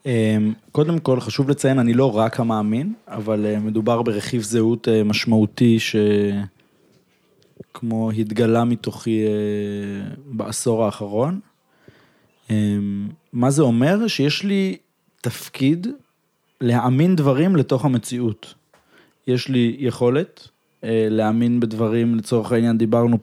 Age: 20-39